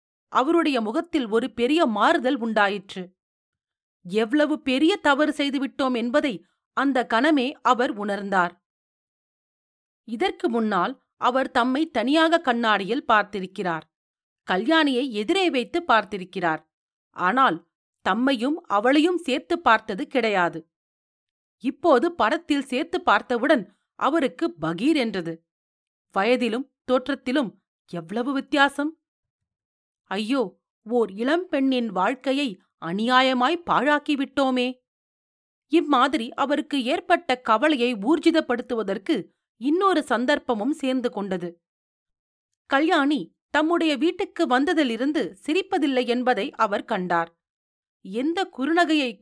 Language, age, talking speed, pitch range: Tamil, 40-59, 85 wpm, 225-305 Hz